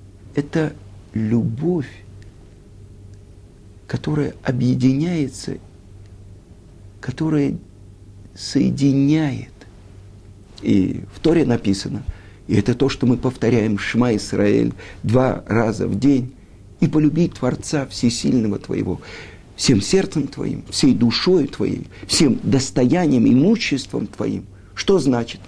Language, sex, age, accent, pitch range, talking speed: Russian, male, 50-69, native, 100-140 Hz, 90 wpm